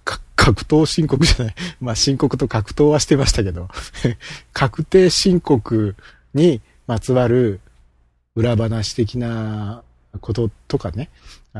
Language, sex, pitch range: Japanese, male, 85-135 Hz